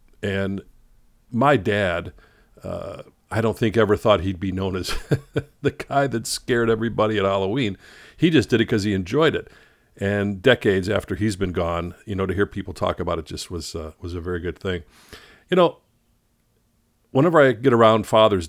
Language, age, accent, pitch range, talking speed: English, 50-69, American, 95-115 Hz, 185 wpm